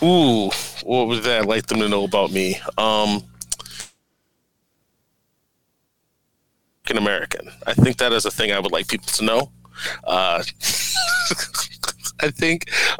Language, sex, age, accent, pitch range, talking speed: English, male, 30-49, American, 95-130 Hz, 130 wpm